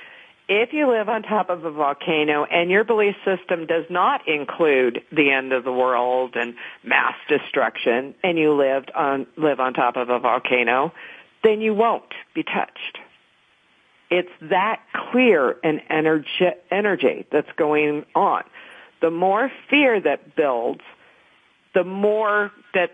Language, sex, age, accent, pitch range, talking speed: English, female, 50-69, American, 150-195 Hz, 145 wpm